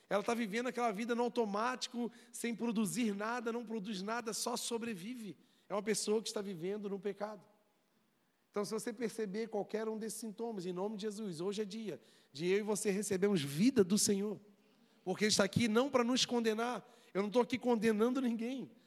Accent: Brazilian